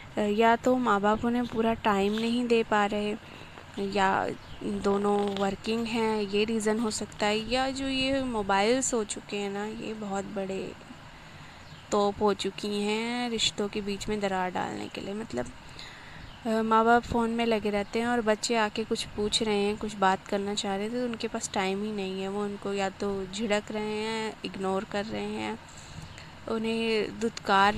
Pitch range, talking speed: 200-235 Hz, 180 wpm